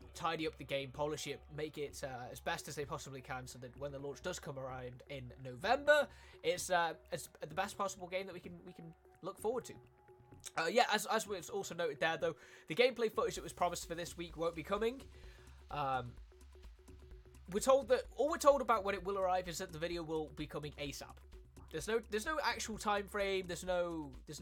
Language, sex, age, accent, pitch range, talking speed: Italian, male, 20-39, British, 140-195 Hz, 225 wpm